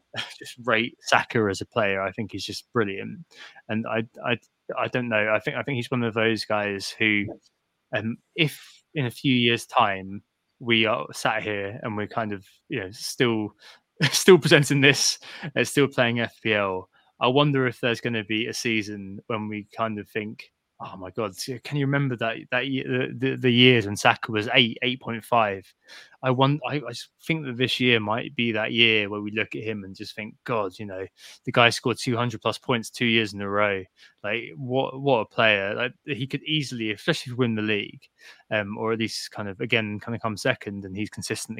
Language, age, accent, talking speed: English, 20-39, British, 210 wpm